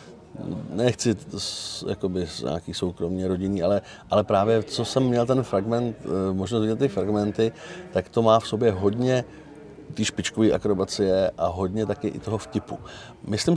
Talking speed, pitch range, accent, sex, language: 150 wpm, 95-110 Hz, native, male, Czech